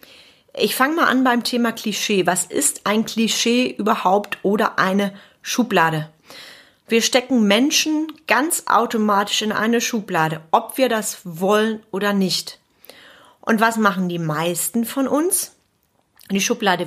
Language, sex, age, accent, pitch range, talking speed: German, female, 30-49, German, 195-250 Hz, 135 wpm